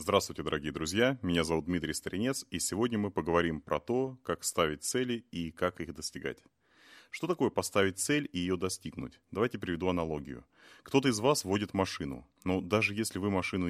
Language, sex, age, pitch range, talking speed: Russian, male, 30-49, 85-110 Hz, 175 wpm